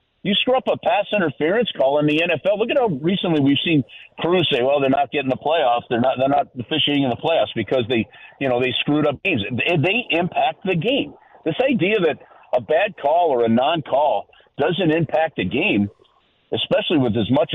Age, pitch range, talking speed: 50-69, 120-175 Hz, 210 wpm